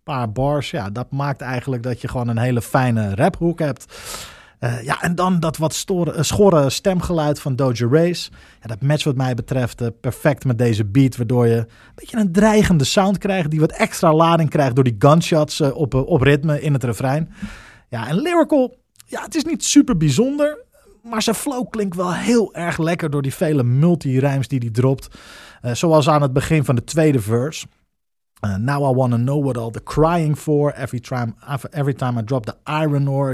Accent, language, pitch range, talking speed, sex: Dutch, Dutch, 125-160 Hz, 200 wpm, male